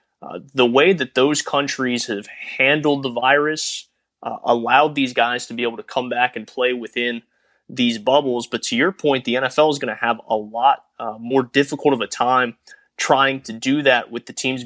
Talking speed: 205 wpm